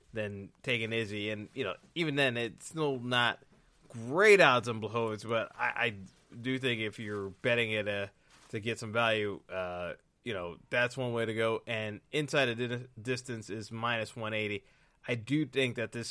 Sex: male